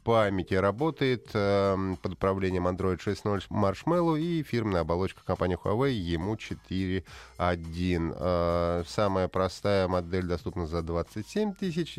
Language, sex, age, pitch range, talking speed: Russian, male, 30-49, 95-130 Hz, 115 wpm